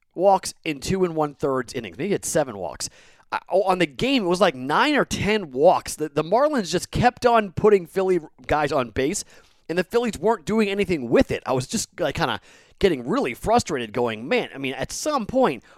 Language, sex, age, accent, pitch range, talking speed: English, male, 30-49, American, 125-185 Hz, 215 wpm